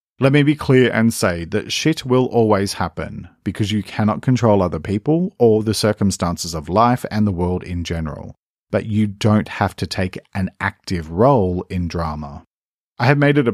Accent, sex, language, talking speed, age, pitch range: Australian, male, English, 190 wpm, 40-59, 90-115 Hz